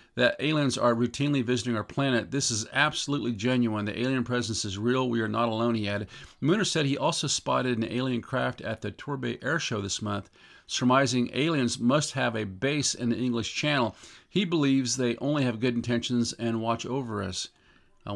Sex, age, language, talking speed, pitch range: male, 50-69, English, 195 wpm, 105-130 Hz